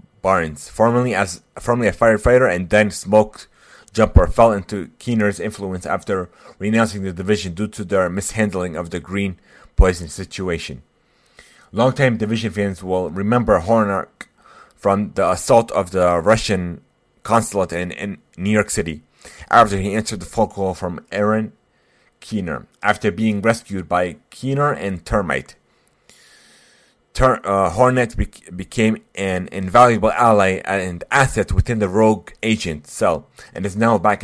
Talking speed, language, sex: 140 wpm, English, male